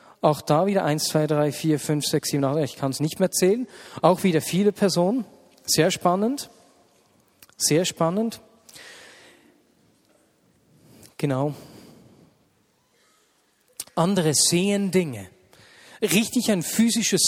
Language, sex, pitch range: German, male, 150-190 Hz